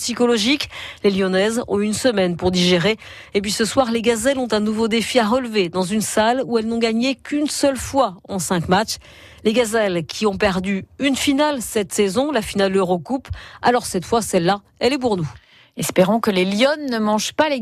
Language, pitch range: French, 190-245 Hz